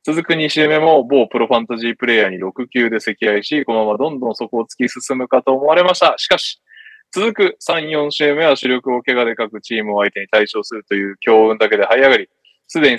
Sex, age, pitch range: male, 20-39, 115-150 Hz